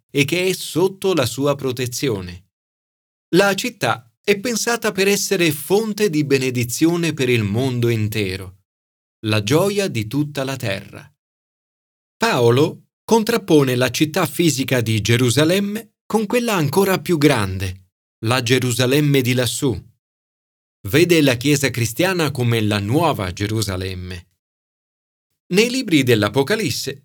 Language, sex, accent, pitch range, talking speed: Italian, male, native, 115-165 Hz, 120 wpm